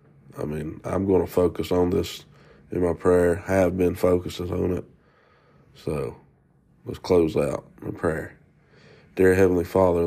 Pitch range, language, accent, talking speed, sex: 90-100 Hz, English, American, 150 wpm, male